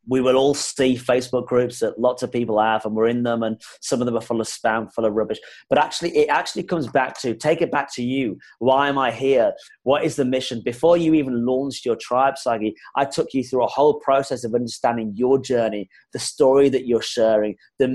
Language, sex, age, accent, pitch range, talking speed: English, male, 30-49, British, 115-145 Hz, 235 wpm